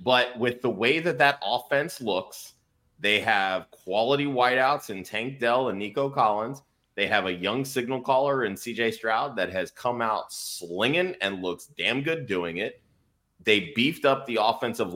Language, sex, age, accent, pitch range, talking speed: English, male, 30-49, American, 95-135 Hz, 175 wpm